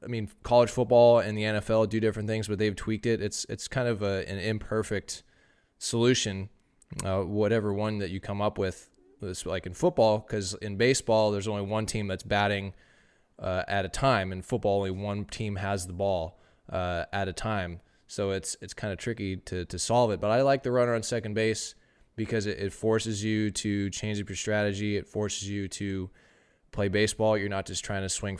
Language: English